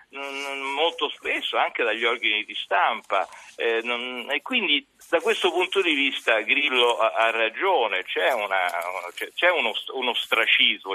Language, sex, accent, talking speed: Italian, male, native, 125 wpm